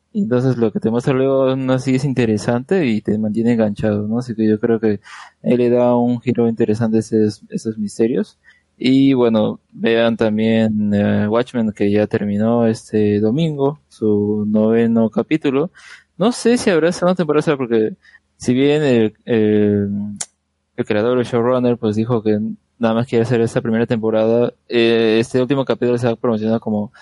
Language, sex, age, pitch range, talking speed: Spanish, male, 20-39, 110-125 Hz, 175 wpm